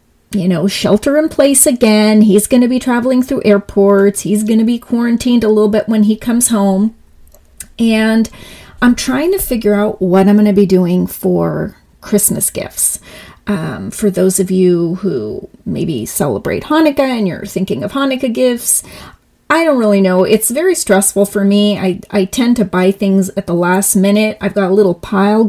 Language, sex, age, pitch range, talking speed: English, female, 30-49, 200-250 Hz, 185 wpm